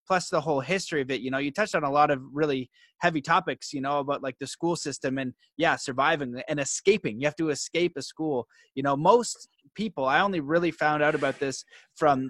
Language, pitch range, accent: English, 145-190 Hz, American